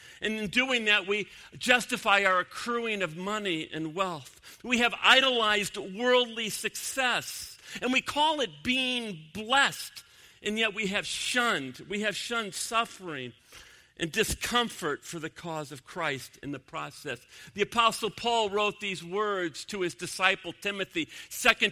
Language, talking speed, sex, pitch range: English, 145 wpm, male, 185-235 Hz